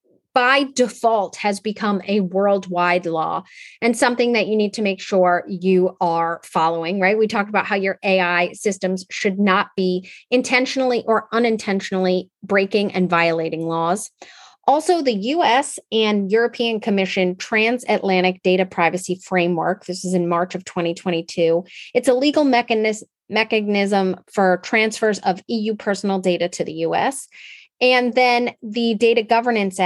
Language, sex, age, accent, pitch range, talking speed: English, female, 30-49, American, 190-240 Hz, 140 wpm